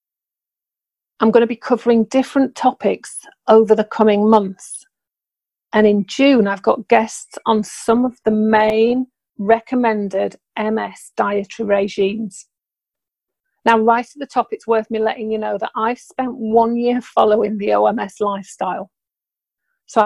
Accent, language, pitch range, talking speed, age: British, English, 205-235 Hz, 140 wpm, 40-59